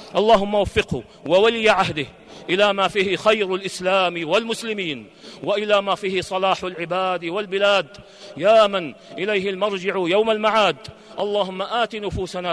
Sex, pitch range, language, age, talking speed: male, 185-215 Hz, Arabic, 40-59, 120 wpm